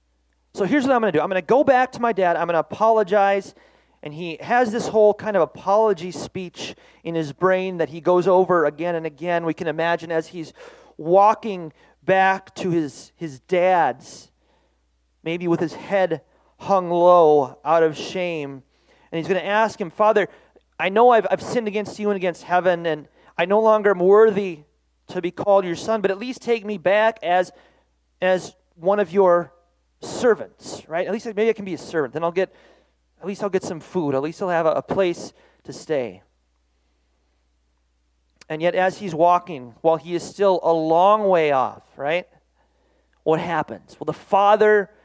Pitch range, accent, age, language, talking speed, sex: 150-200 Hz, American, 30-49, English, 190 wpm, male